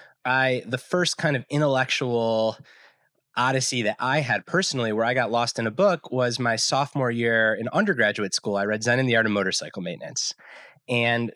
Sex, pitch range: male, 115-145 Hz